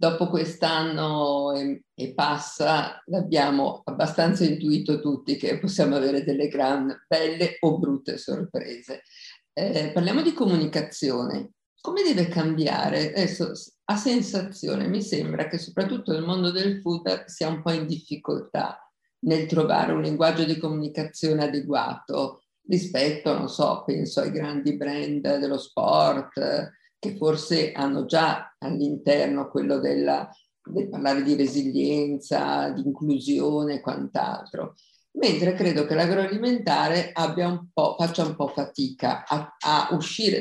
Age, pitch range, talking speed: 50-69, 145-175 Hz, 125 wpm